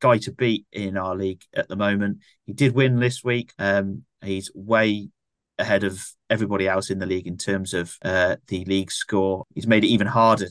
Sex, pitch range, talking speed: male, 100-125 Hz, 205 wpm